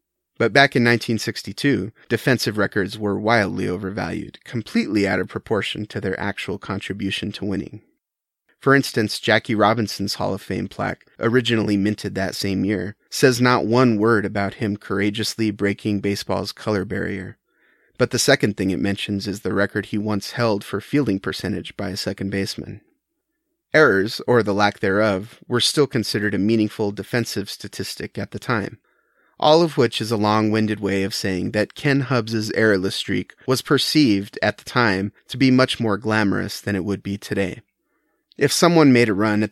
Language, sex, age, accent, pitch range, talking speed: English, male, 30-49, American, 100-120 Hz, 170 wpm